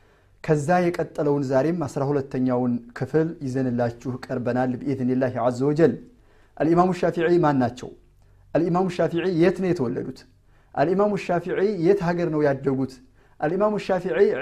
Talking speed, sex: 120 wpm, male